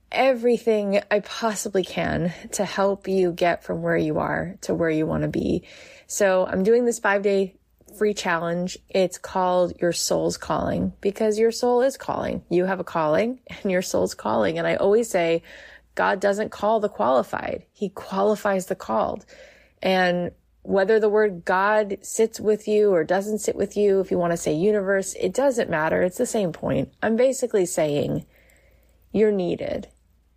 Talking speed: 175 wpm